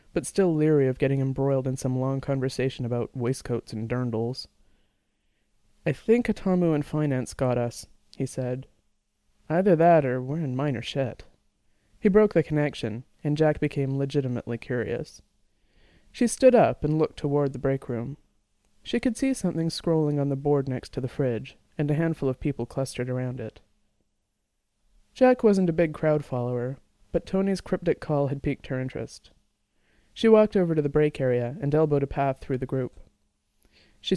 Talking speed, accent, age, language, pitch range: 170 wpm, American, 30-49, English, 125-155 Hz